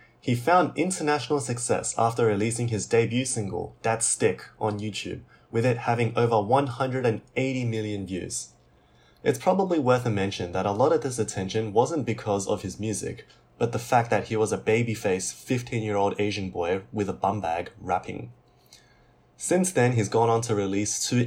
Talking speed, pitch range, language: 170 wpm, 100-125 Hz, English